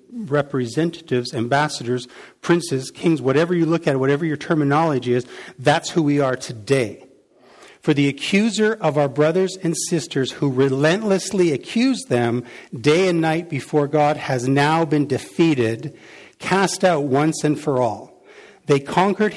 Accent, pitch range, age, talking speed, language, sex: American, 135-175 Hz, 50-69, 145 wpm, English, male